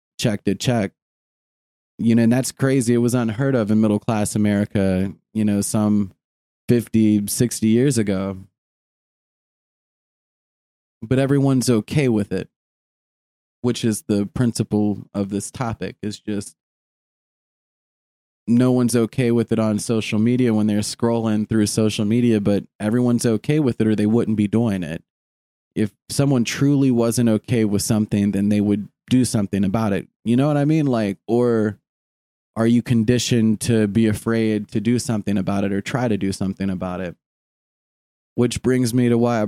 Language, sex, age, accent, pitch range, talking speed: English, male, 20-39, American, 100-120 Hz, 165 wpm